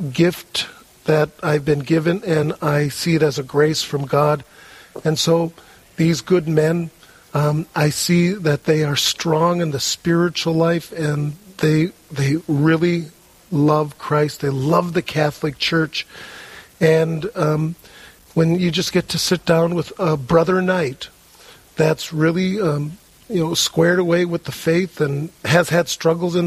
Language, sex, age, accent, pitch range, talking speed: English, male, 50-69, American, 150-170 Hz, 155 wpm